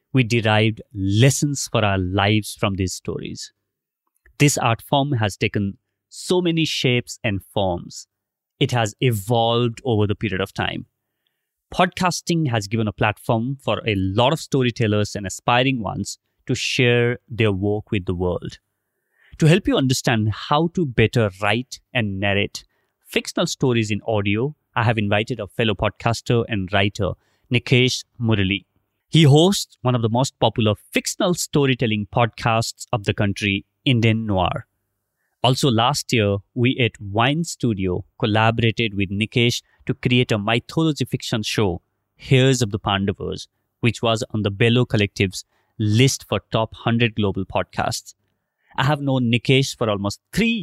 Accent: Indian